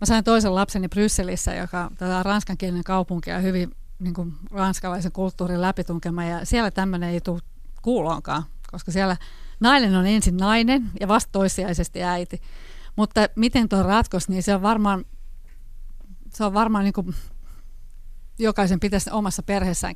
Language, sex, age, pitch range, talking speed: Finnish, female, 30-49, 180-215 Hz, 145 wpm